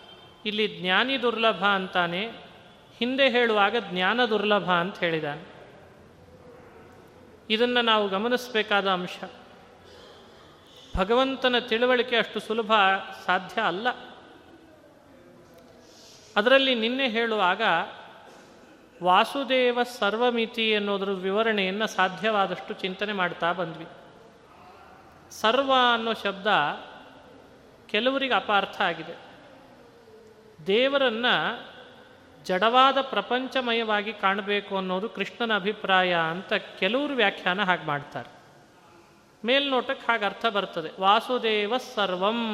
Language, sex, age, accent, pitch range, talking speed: Kannada, male, 30-49, native, 190-240 Hz, 80 wpm